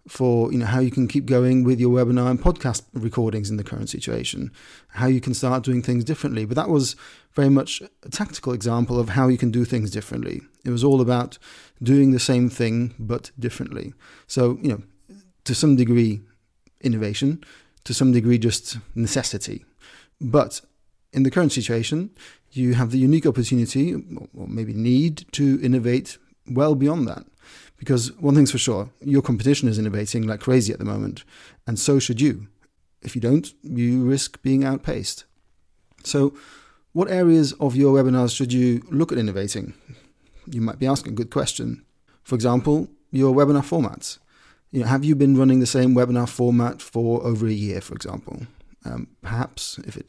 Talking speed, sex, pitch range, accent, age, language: 175 wpm, male, 115-135 Hz, British, 30-49, English